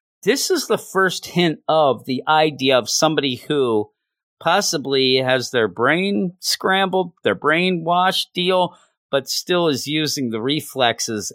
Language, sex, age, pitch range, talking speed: English, male, 40-59, 110-155 Hz, 130 wpm